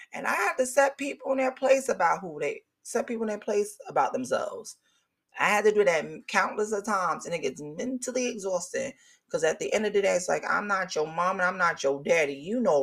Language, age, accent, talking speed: English, 30-49, American, 245 wpm